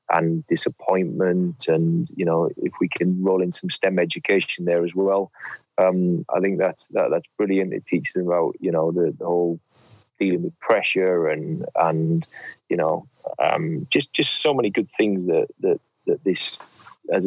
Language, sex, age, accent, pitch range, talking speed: English, male, 30-49, British, 95-110 Hz, 175 wpm